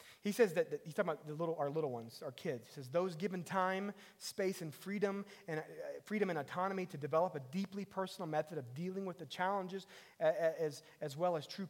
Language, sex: English, male